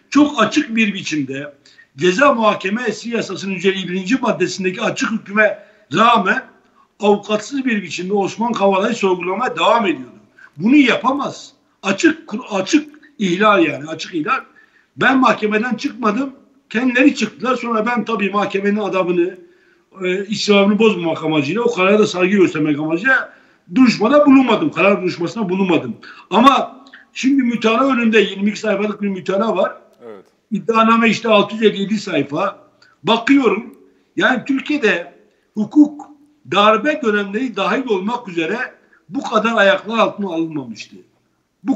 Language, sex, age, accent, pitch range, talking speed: Turkish, male, 60-79, native, 190-255 Hz, 115 wpm